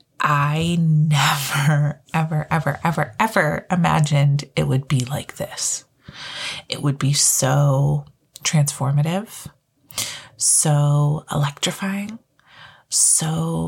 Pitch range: 145-175 Hz